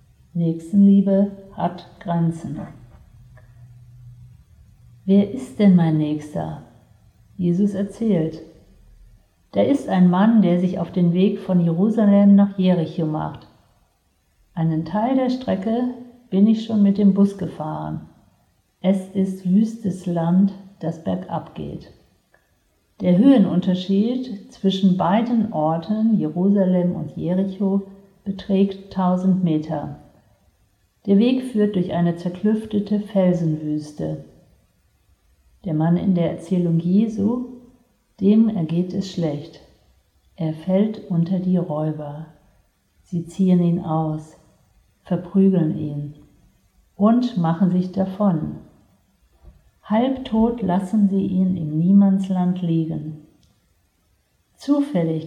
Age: 50-69